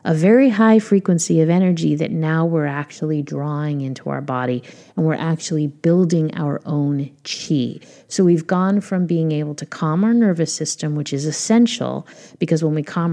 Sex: female